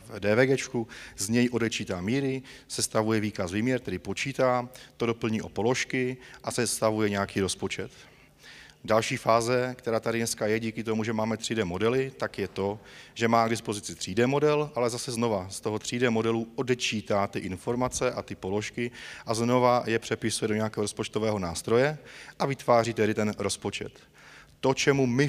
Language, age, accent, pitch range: Czech, 30-49, native, 105-120 Hz